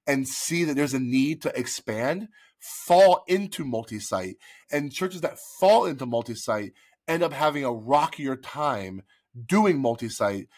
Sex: male